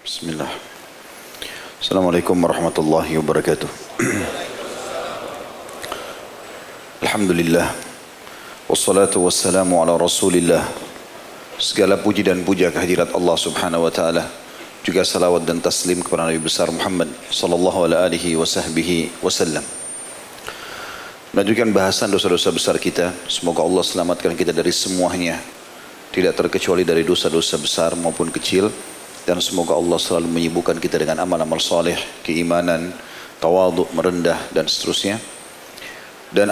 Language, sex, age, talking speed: Indonesian, male, 40-59, 105 wpm